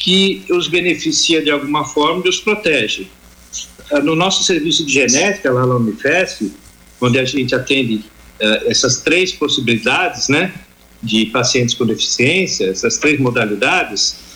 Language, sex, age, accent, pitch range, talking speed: Portuguese, male, 50-69, Brazilian, 130-185 Hz, 140 wpm